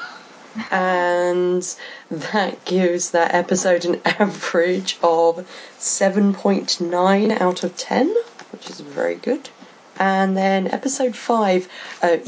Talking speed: 105 wpm